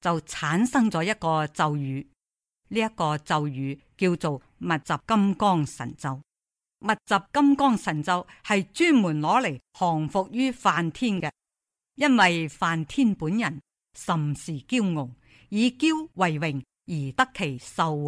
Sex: female